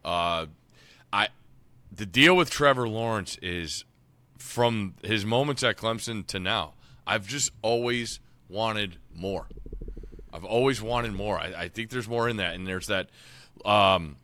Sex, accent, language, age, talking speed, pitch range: male, American, English, 30-49, 150 wpm, 105-135 Hz